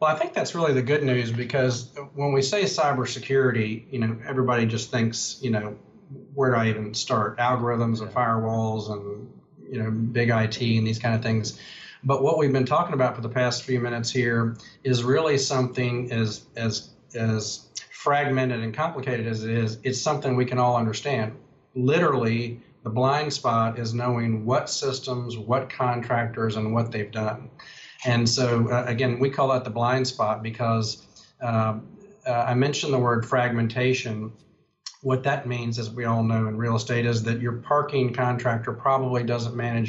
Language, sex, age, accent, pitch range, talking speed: English, male, 40-59, American, 115-130 Hz, 175 wpm